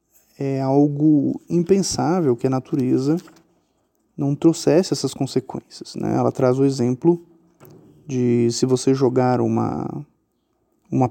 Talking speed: 115 wpm